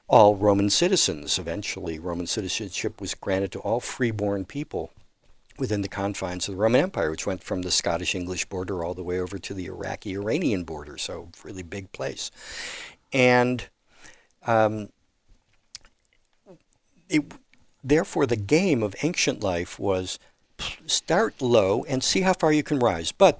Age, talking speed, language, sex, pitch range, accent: 60-79, 145 wpm, English, male, 105-145 Hz, American